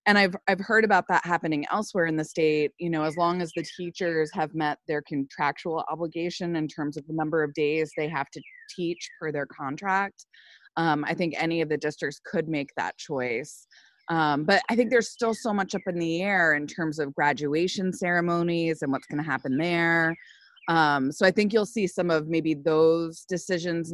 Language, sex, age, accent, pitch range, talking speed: English, female, 20-39, American, 150-195 Hz, 205 wpm